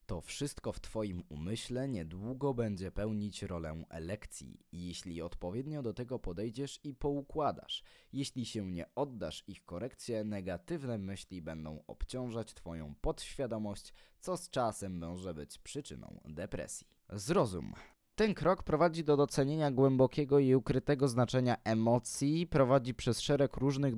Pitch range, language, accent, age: 105-150 Hz, Polish, native, 20-39